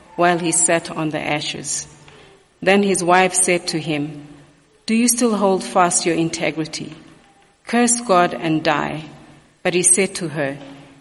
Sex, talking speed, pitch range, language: female, 155 wpm, 160-185 Hz, English